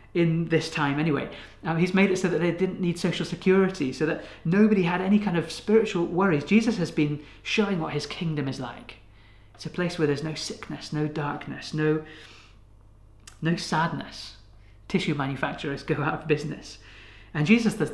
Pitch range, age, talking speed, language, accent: 120-175 Hz, 30-49, 180 wpm, English, British